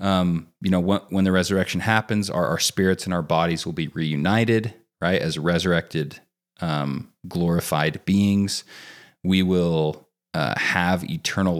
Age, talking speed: 30-49, 145 wpm